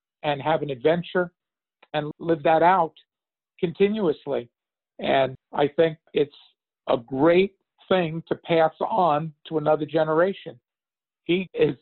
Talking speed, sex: 120 wpm, male